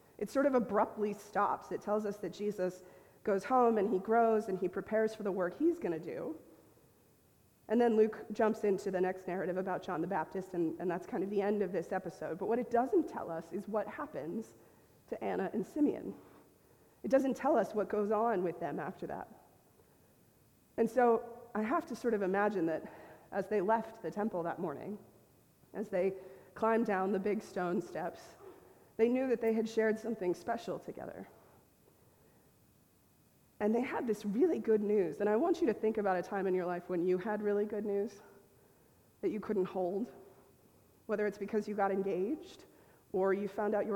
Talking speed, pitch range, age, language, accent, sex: 195 wpm, 185-220 Hz, 30-49, English, American, female